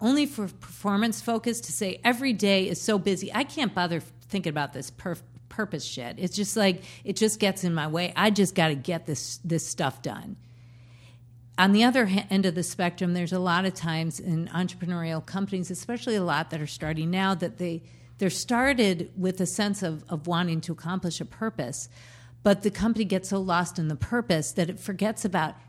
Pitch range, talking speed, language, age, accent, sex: 160-205 Hz, 210 wpm, English, 50-69, American, female